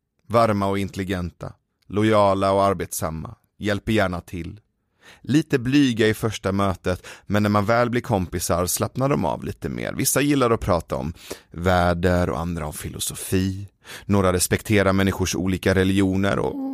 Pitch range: 90-105 Hz